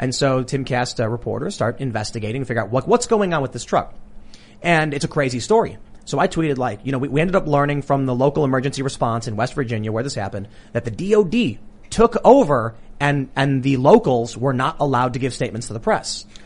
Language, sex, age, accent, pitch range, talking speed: English, male, 30-49, American, 125-160 Hz, 220 wpm